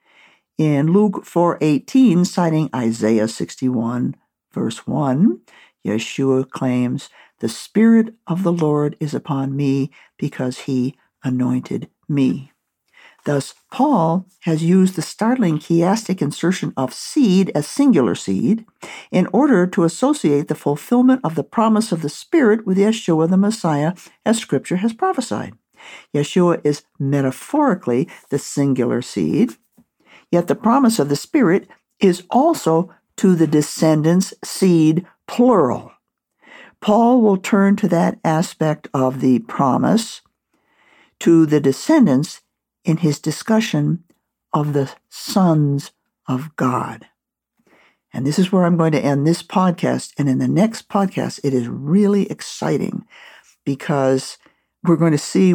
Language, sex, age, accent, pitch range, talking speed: English, male, 60-79, American, 145-200 Hz, 125 wpm